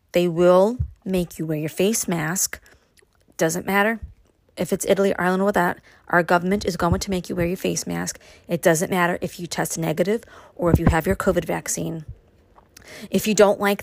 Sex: female